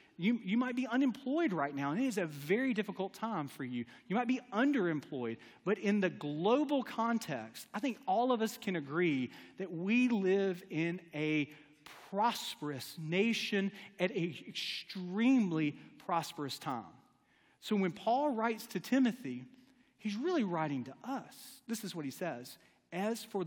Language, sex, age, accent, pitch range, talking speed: English, male, 40-59, American, 145-220 Hz, 160 wpm